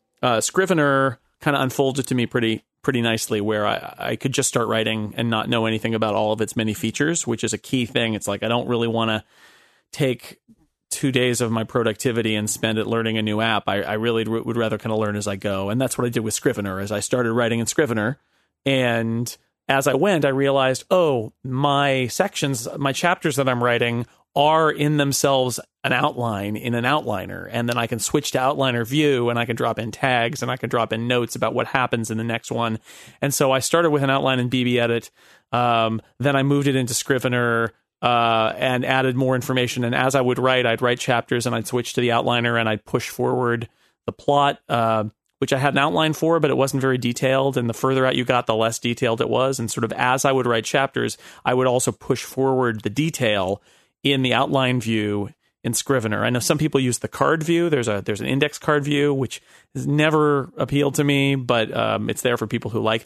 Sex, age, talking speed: male, 30-49, 225 wpm